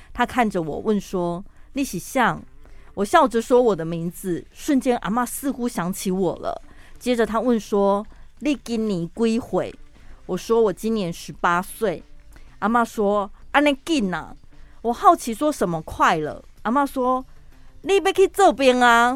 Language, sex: Chinese, female